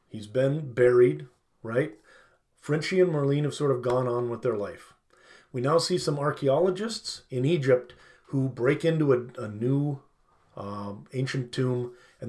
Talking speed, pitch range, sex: 155 wpm, 120-155 Hz, male